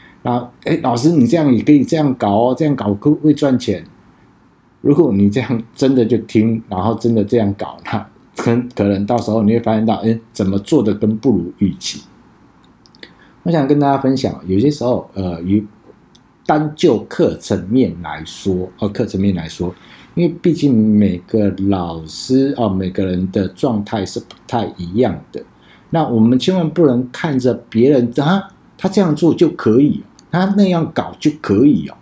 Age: 50-69